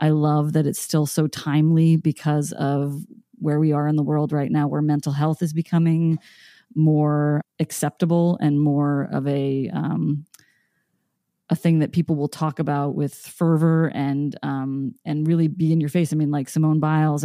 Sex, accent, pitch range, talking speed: female, American, 140-160 Hz, 175 wpm